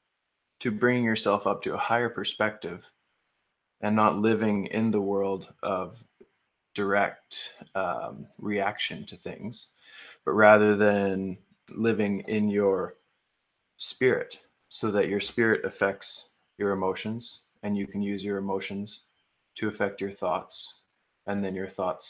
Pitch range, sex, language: 100-115 Hz, male, English